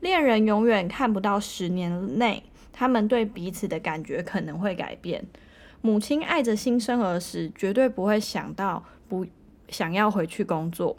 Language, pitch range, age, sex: Chinese, 180-240 Hz, 20-39, female